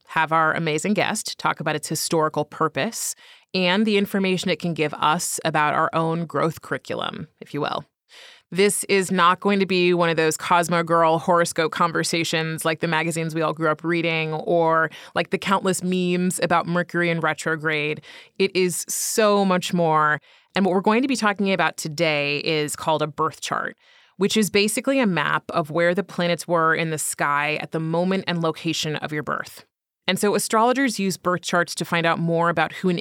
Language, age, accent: English, 30-49, American